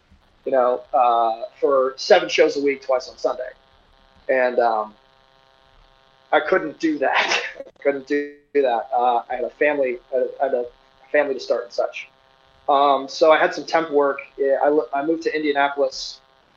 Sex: male